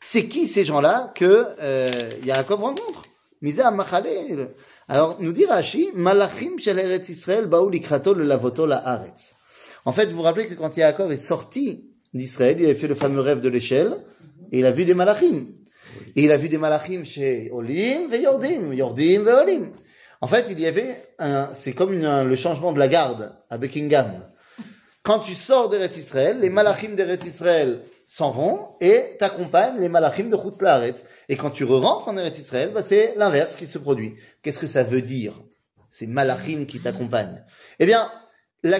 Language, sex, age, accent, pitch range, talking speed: French, male, 30-49, French, 140-210 Hz, 175 wpm